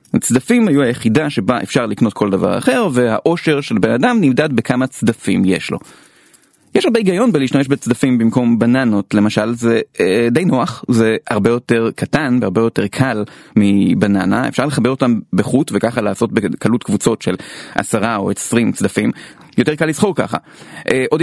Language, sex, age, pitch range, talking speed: Hebrew, male, 30-49, 120-165 Hz, 155 wpm